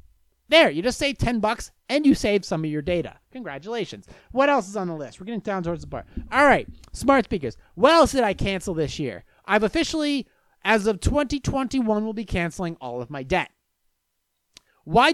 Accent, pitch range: American, 175-255 Hz